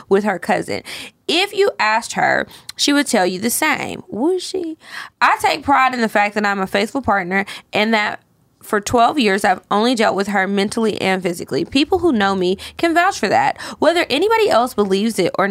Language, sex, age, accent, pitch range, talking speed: English, female, 20-39, American, 195-240 Hz, 205 wpm